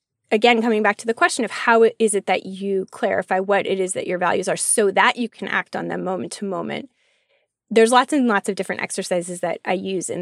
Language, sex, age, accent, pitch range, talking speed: English, female, 20-39, American, 190-235 Hz, 240 wpm